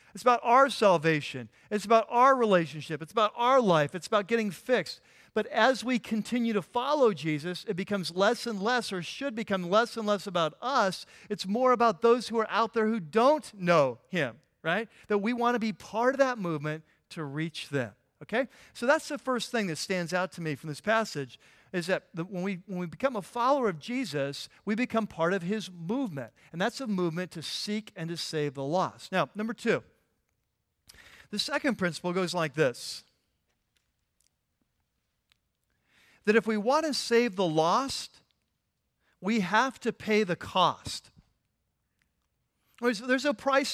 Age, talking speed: 50-69, 175 wpm